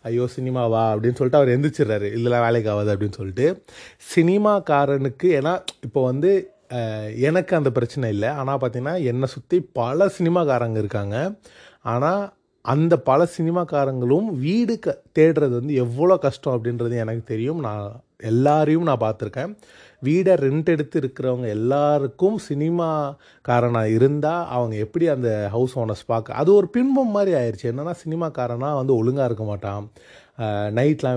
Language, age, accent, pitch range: Tamil, 30-49, native, 115-155 Hz